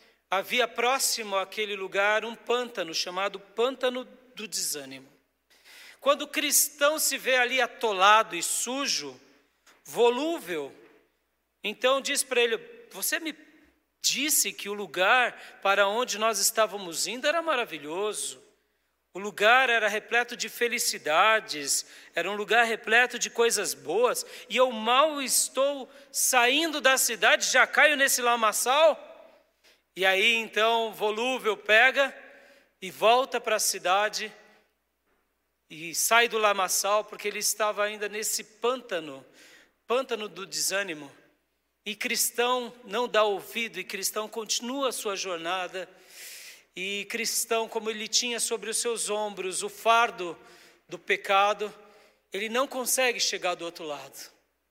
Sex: male